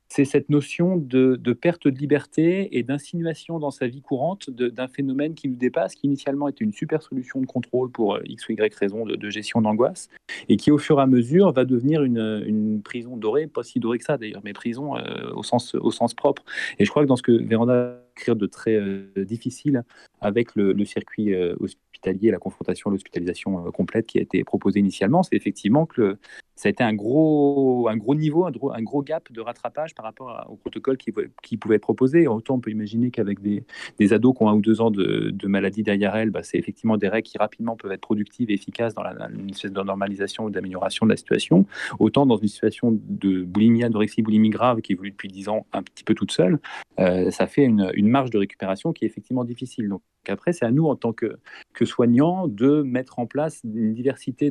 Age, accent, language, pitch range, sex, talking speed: 30-49, French, French, 105-140 Hz, male, 230 wpm